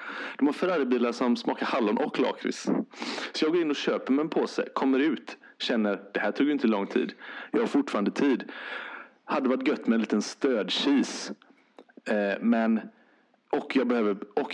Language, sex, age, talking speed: English, male, 30-49, 160 wpm